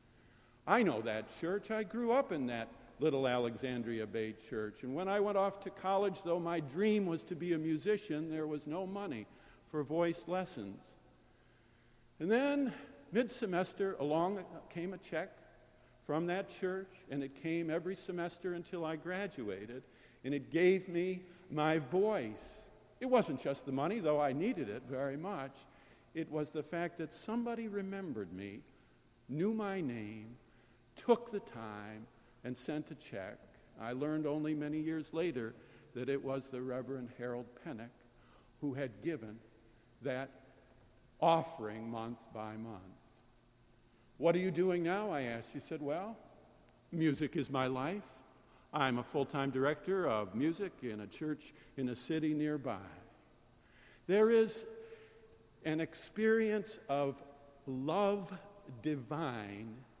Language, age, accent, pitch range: English, 50-69, American, 120-180 Hz